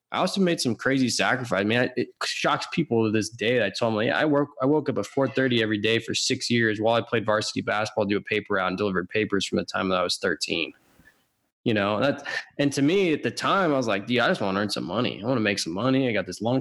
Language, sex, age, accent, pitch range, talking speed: English, male, 20-39, American, 110-145 Hz, 290 wpm